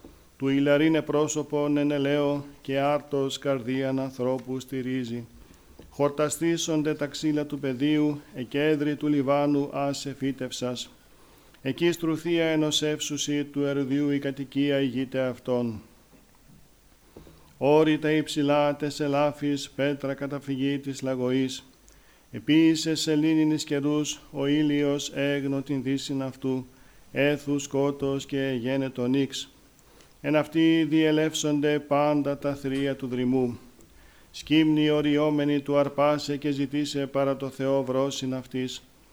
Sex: male